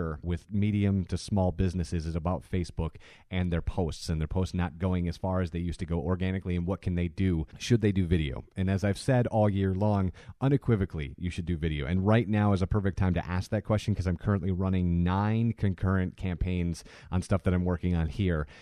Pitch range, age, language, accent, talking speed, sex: 85-105 Hz, 30-49, English, American, 225 wpm, male